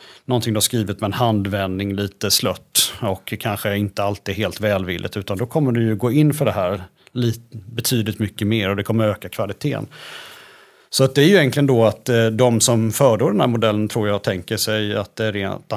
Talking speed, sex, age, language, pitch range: 210 wpm, male, 30-49, Swedish, 100-125 Hz